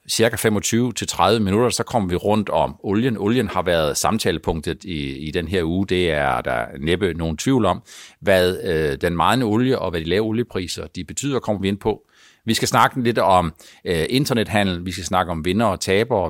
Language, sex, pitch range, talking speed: Danish, male, 90-110 Hz, 205 wpm